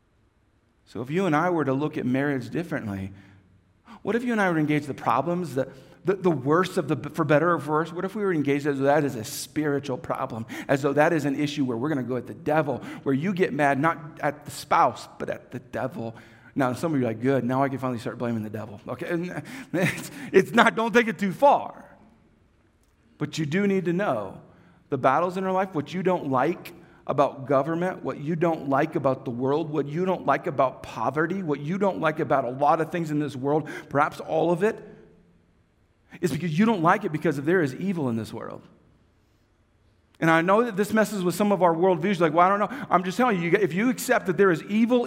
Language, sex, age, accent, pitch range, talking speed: English, male, 40-59, American, 130-185 Hz, 240 wpm